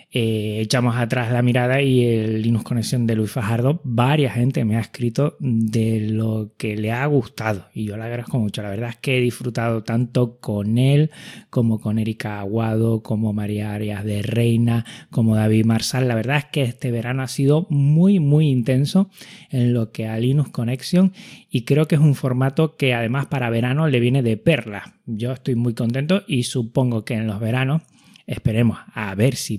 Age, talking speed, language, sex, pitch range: 20-39, 190 wpm, Spanish, male, 110-130 Hz